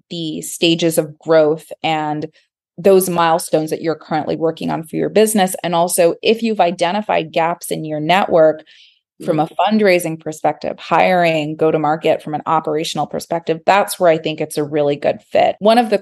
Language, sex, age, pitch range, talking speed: English, female, 20-39, 155-175 Hz, 180 wpm